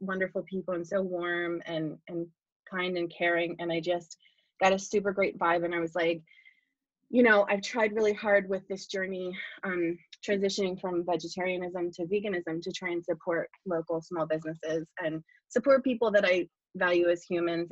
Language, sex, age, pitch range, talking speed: English, female, 20-39, 170-210 Hz, 175 wpm